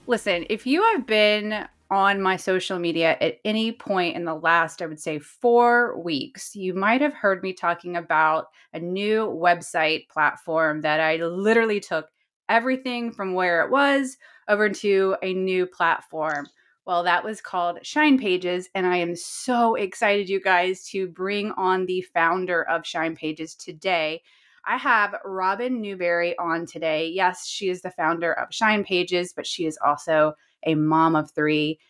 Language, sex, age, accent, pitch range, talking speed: English, female, 30-49, American, 160-205 Hz, 165 wpm